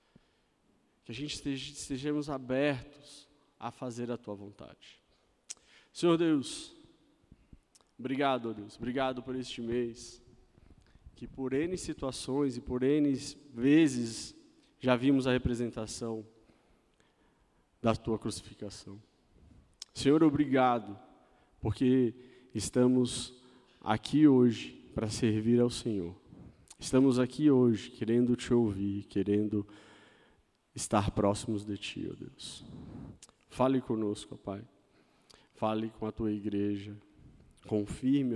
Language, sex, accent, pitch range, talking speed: Portuguese, male, Brazilian, 105-125 Hz, 105 wpm